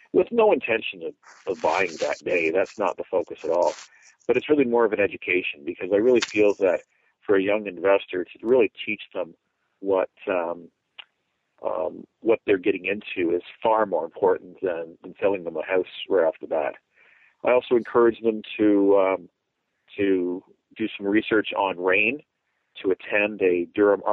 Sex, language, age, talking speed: male, English, 50-69, 170 wpm